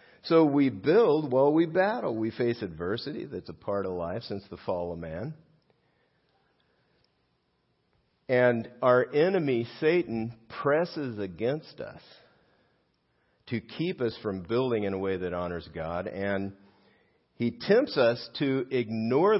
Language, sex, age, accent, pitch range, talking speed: English, male, 50-69, American, 90-125 Hz, 135 wpm